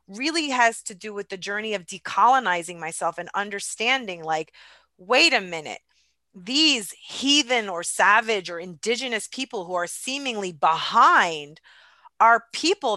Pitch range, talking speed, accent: 200-280 Hz, 135 wpm, American